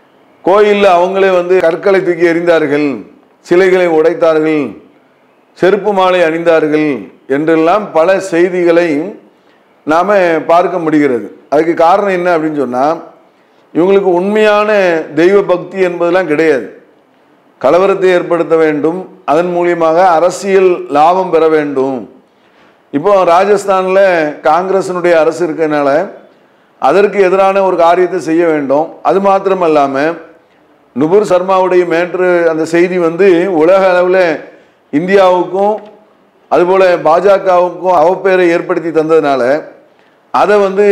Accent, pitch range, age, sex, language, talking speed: Indian, 160-185 Hz, 40-59, male, English, 105 wpm